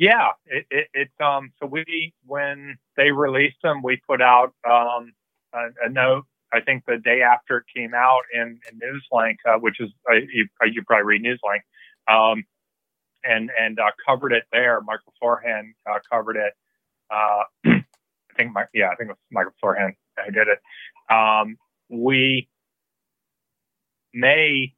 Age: 40-59